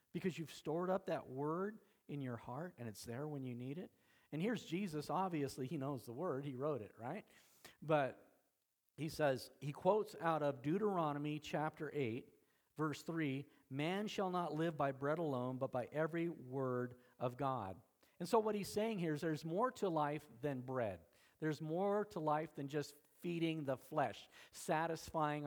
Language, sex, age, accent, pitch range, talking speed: English, male, 50-69, American, 135-165 Hz, 180 wpm